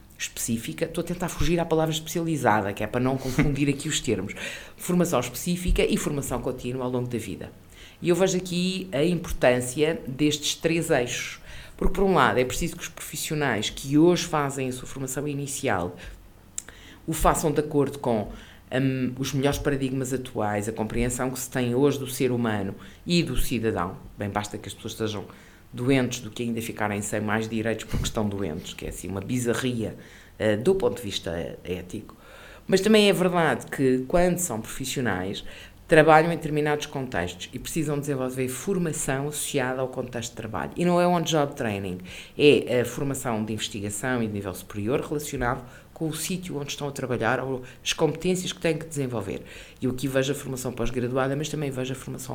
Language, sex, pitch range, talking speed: Portuguese, female, 110-150 Hz, 185 wpm